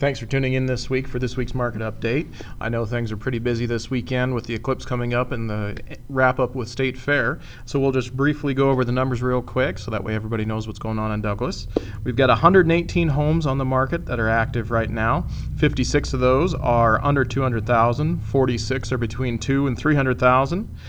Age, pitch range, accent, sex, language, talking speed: 40-59, 115-140 Hz, American, male, English, 215 wpm